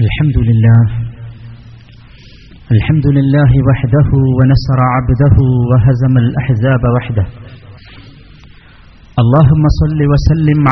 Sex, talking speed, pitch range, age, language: male, 75 wpm, 130-160 Hz, 40-59, Malayalam